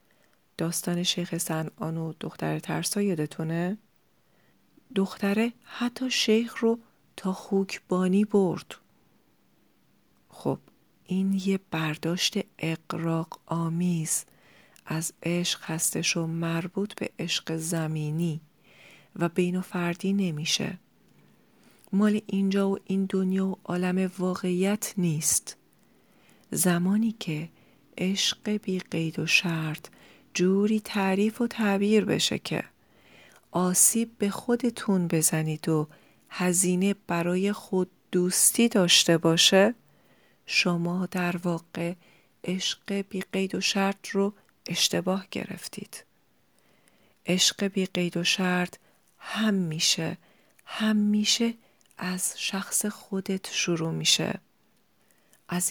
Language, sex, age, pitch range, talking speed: Persian, female, 40-59, 170-200 Hz, 100 wpm